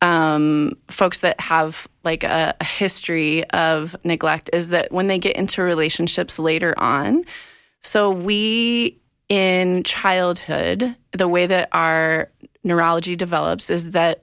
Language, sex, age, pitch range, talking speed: English, female, 30-49, 160-190 Hz, 130 wpm